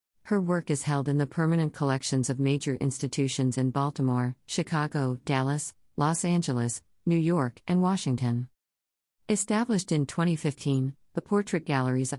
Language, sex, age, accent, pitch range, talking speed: English, female, 50-69, American, 130-165 Hz, 135 wpm